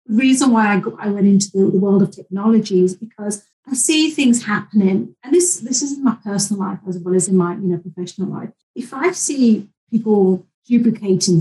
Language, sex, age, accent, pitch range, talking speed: English, female, 40-59, British, 190-225 Hz, 215 wpm